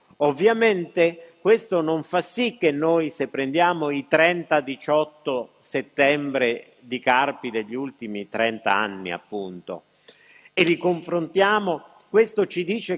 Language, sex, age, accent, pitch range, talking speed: Italian, male, 50-69, native, 120-180 Hz, 115 wpm